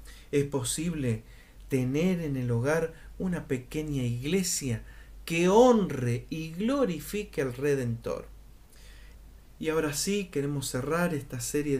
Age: 40-59